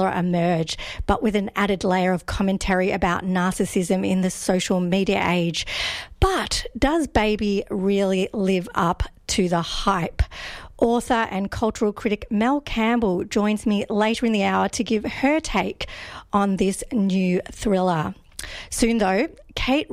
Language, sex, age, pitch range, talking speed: English, female, 50-69, 190-230 Hz, 140 wpm